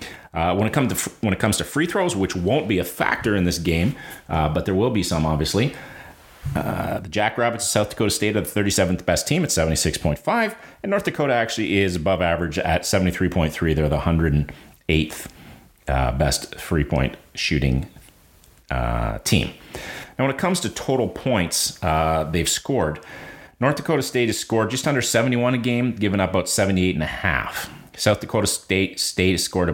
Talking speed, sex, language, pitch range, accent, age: 185 wpm, male, English, 80-110 Hz, American, 30-49